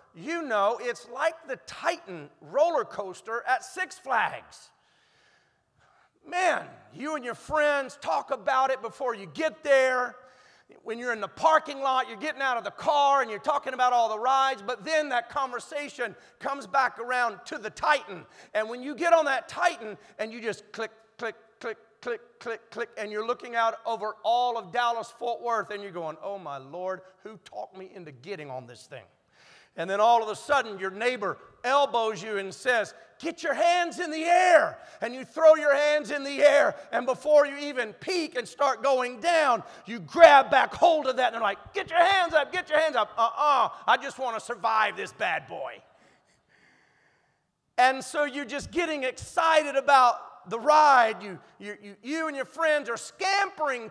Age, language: 40-59, English